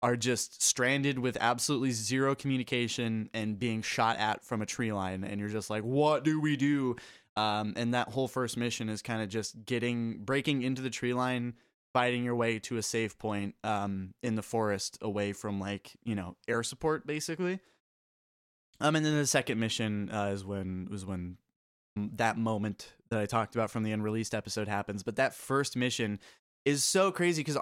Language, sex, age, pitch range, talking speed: English, male, 20-39, 110-140 Hz, 190 wpm